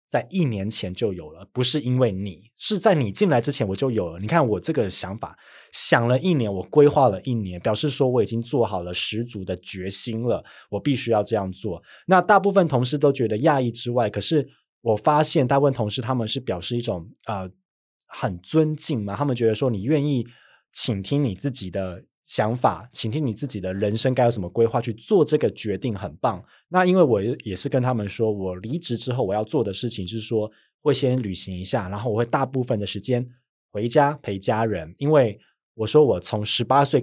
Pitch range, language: 105-140 Hz, Chinese